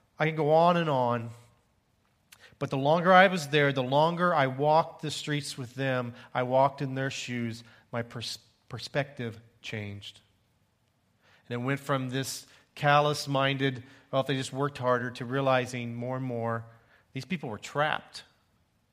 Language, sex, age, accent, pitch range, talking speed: English, male, 40-59, American, 120-150 Hz, 155 wpm